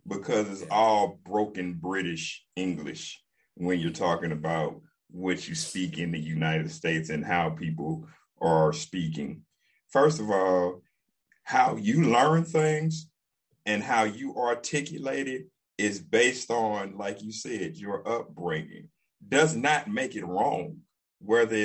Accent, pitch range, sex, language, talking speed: American, 90-135 Hz, male, English, 135 wpm